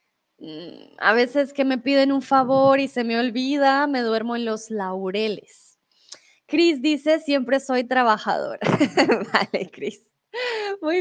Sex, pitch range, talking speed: female, 235-295 Hz, 130 wpm